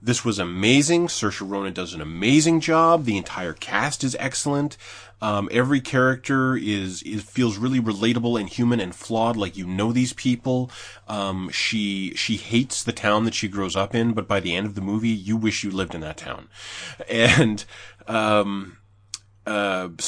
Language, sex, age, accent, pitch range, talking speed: English, male, 30-49, American, 100-120 Hz, 175 wpm